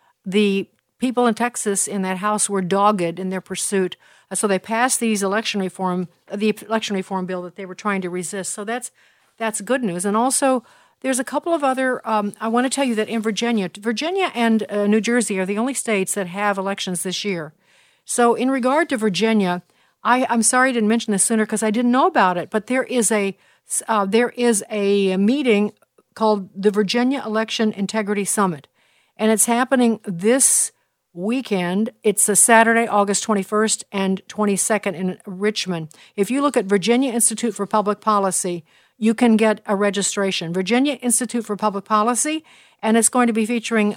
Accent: American